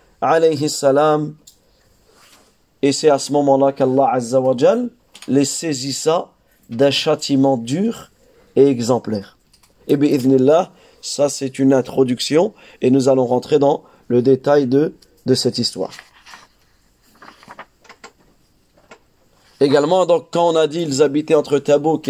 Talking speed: 115 wpm